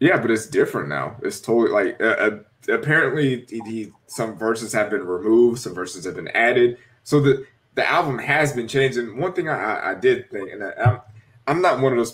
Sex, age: male, 20-39